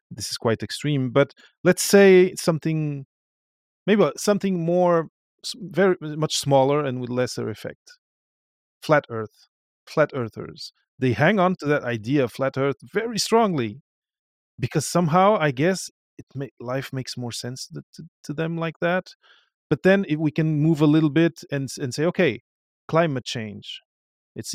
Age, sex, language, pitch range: 30-49, male, English, 120-160 Hz